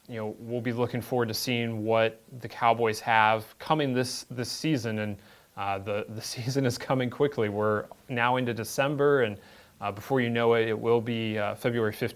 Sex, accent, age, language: male, American, 30-49, English